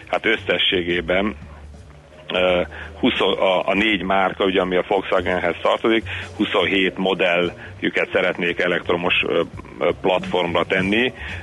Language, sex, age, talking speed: Hungarian, male, 40-59, 85 wpm